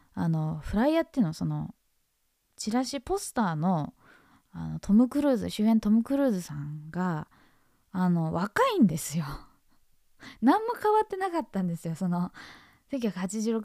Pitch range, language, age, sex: 175-265 Hz, Japanese, 20-39, female